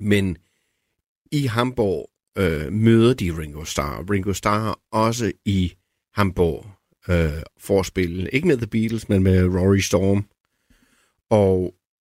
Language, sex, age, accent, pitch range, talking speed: Danish, male, 50-69, native, 90-110 Hz, 115 wpm